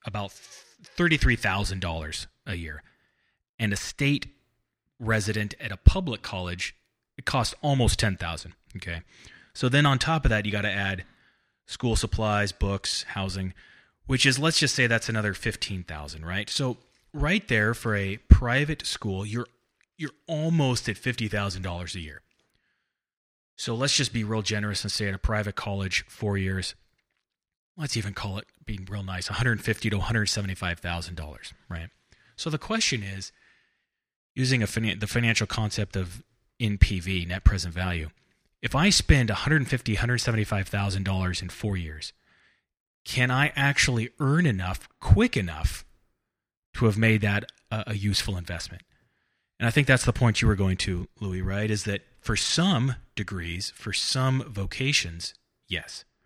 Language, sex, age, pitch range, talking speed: English, male, 30-49, 95-120 Hz, 145 wpm